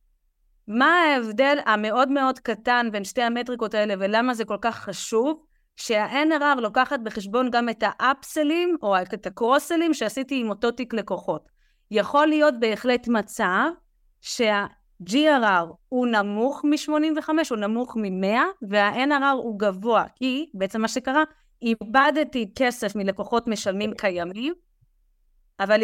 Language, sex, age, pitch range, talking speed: Hebrew, female, 30-49, 205-270 Hz, 120 wpm